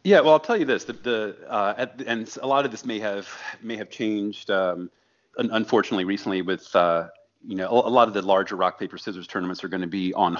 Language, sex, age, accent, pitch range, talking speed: English, male, 30-49, American, 90-100 Hz, 250 wpm